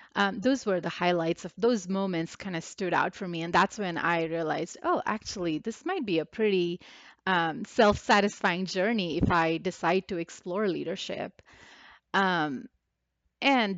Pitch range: 170-200 Hz